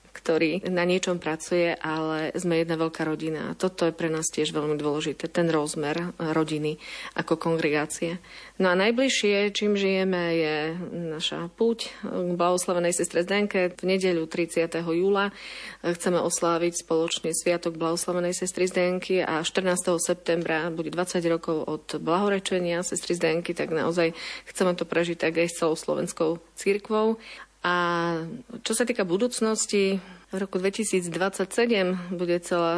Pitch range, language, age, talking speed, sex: 165-185 Hz, Slovak, 30-49, 135 wpm, female